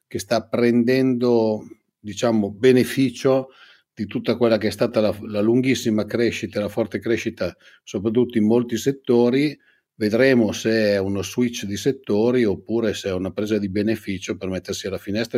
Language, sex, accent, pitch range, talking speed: Italian, male, native, 100-120 Hz, 155 wpm